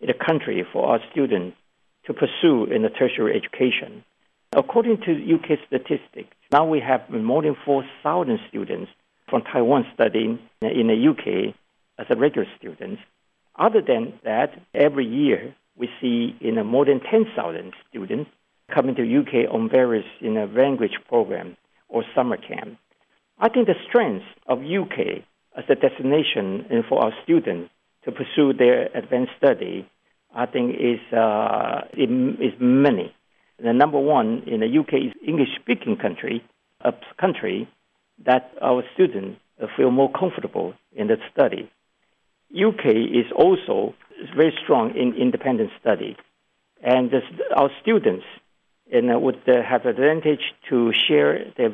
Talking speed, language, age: 145 wpm, English, 60-79